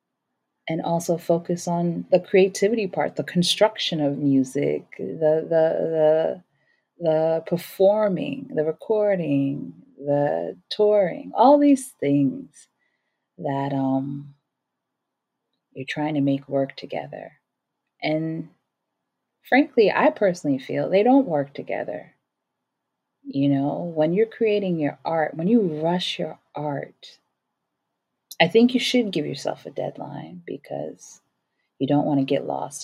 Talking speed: 120 wpm